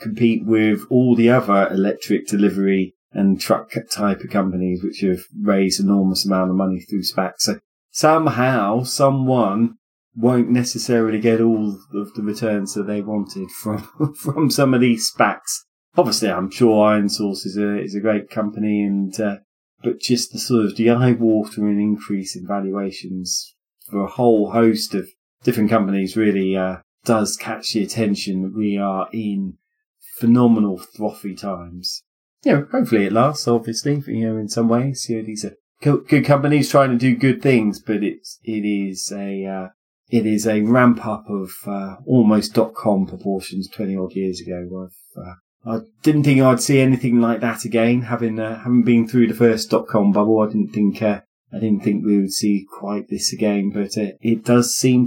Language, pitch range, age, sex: English, 100-120 Hz, 30-49, male